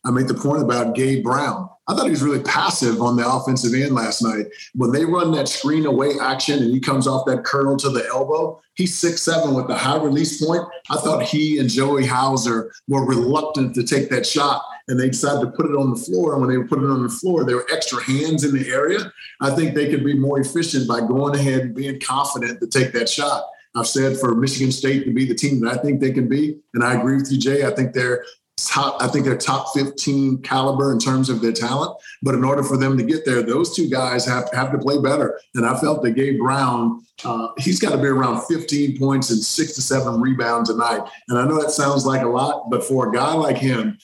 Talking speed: 250 wpm